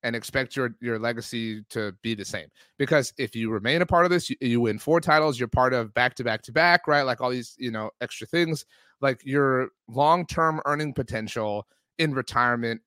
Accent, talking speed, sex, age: American, 210 wpm, male, 30-49